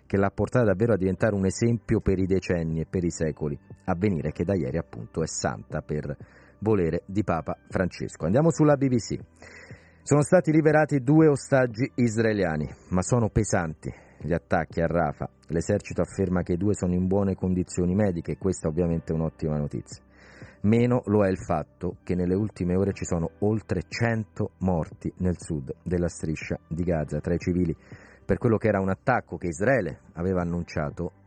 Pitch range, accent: 85-110 Hz, native